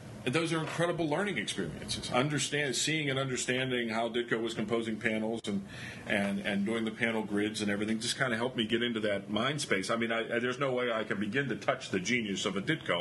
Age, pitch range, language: 40-59, 105-130 Hz, English